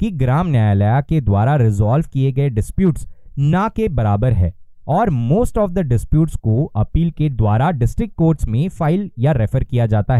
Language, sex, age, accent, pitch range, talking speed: Hindi, male, 20-39, native, 110-160 Hz, 175 wpm